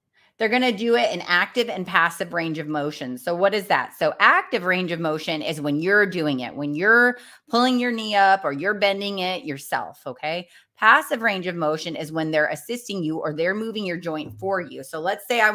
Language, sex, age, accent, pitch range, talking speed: English, female, 30-49, American, 160-220 Hz, 225 wpm